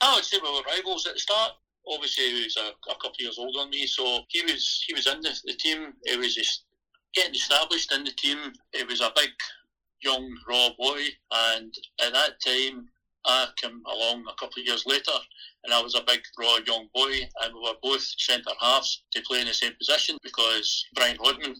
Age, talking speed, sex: 60-79, 215 wpm, male